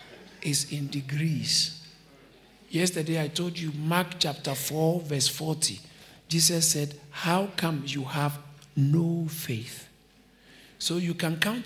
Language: English